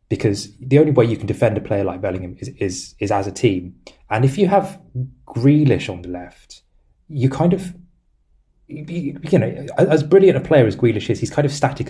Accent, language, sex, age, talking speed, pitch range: British, English, male, 20-39, 205 wpm, 100-125 Hz